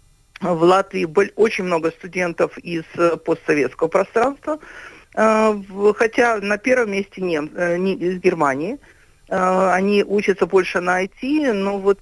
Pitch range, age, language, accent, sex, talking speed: 175-215 Hz, 50-69, Russian, native, female, 115 wpm